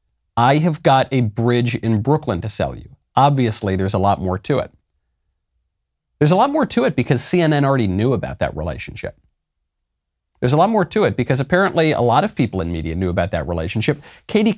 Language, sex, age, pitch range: English, male, 40-59, 95-140 Hz